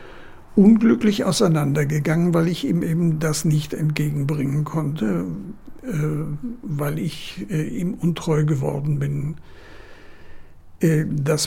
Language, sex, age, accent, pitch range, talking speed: German, male, 60-79, German, 145-170 Hz, 105 wpm